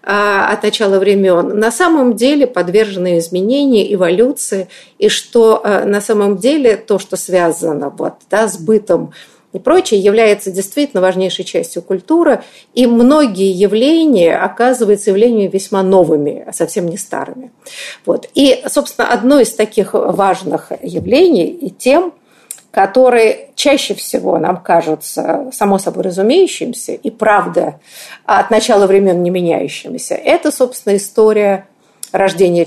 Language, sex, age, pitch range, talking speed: Russian, female, 50-69, 185-250 Hz, 120 wpm